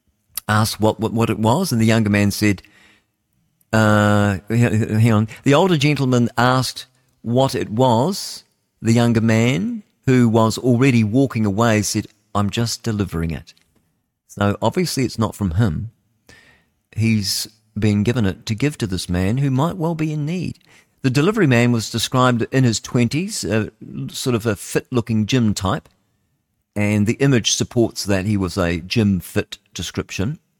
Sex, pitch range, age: male, 100-125 Hz, 50-69